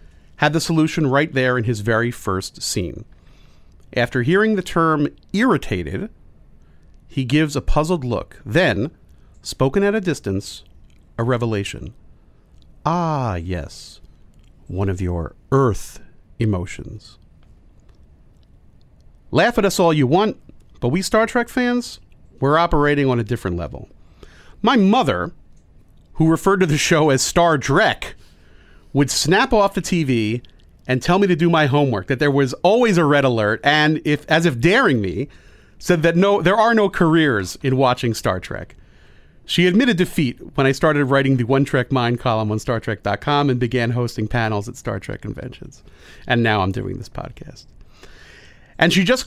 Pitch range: 110-160 Hz